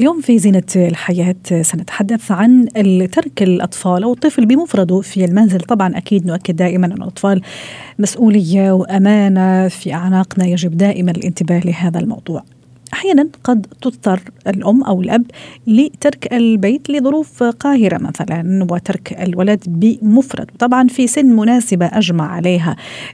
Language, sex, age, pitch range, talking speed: Arabic, female, 40-59, 175-235 Hz, 125 wpm